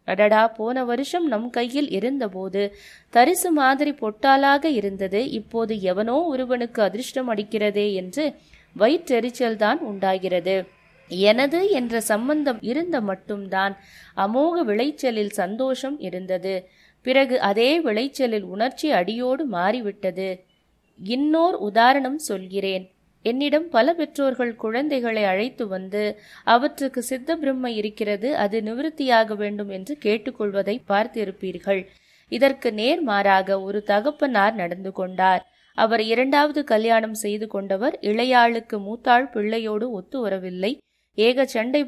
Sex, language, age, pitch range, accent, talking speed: female, Tamil, 20-39, 200-265 Hz, native, 100 wpm